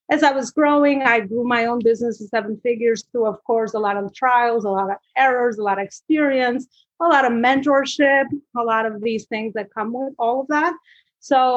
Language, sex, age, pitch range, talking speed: English, female, 30-49, 205-240 Hz, 225 wpm